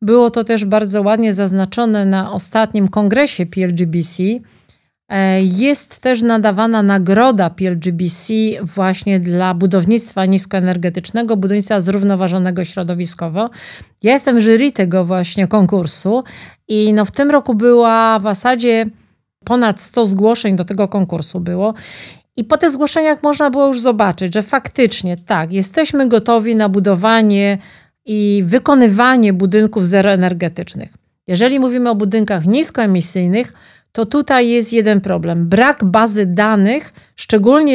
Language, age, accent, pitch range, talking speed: Polish, 40-59, native, 190-235 Hz, 120 wpm